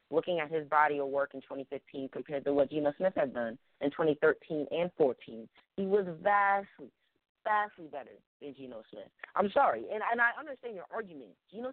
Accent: American